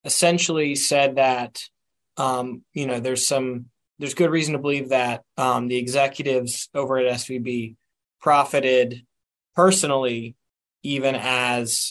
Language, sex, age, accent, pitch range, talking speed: English, male, 20-39, American, 125-140 Hz, 120 wpm